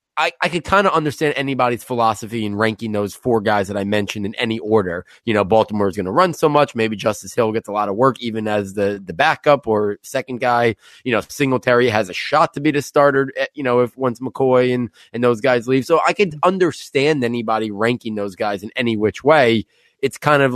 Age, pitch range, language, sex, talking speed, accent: 20-39, 115-145 Hz, English, male, 235 wpm, American